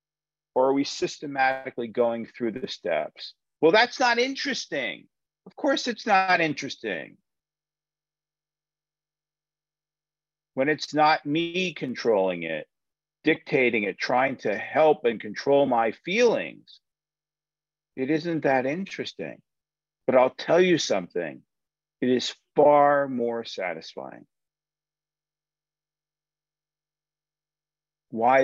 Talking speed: 100 wpm